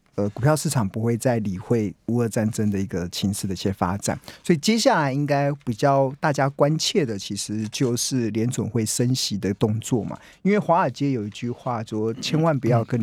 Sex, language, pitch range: male, Chinese, 110-145 Hz